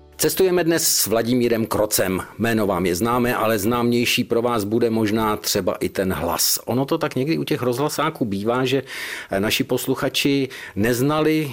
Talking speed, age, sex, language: 160 wpm, 50-69, male, Czech